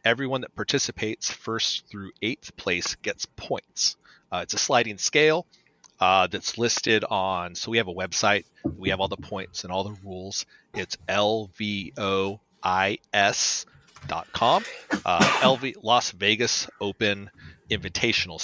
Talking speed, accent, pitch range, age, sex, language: 130 wpm, American, 95-125 Hz, 30-49, male, English